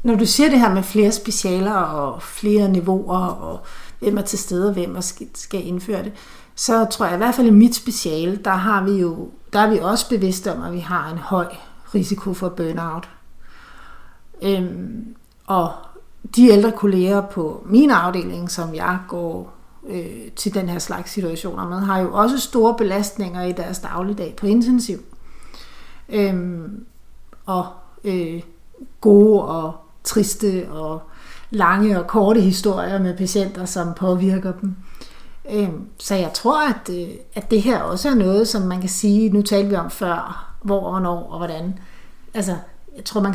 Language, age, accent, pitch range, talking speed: Danish, 60-79, native, 185-220 Hz, 160 wpm